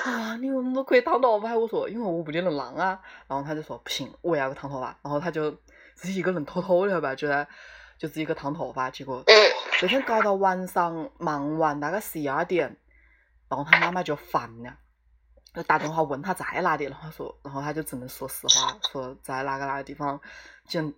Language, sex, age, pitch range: Chinese, female, 20-39, 145-215 Hz